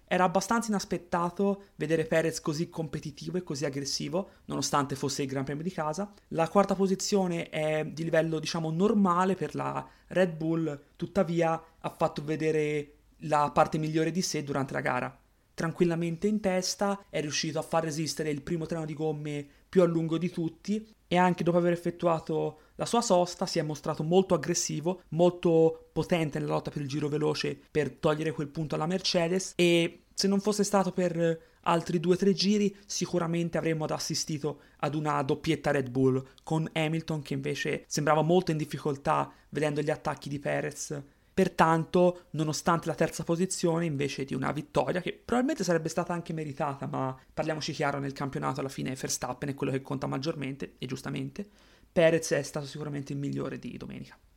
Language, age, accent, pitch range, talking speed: Italian, 30-49, native, 150-180 Hz, 175 wpm